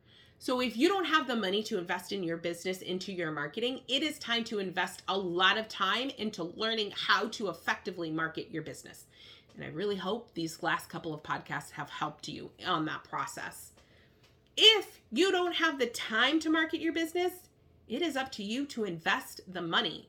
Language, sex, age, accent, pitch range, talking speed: English, female, 30-49, American, 160-240 Hz, 195 wpm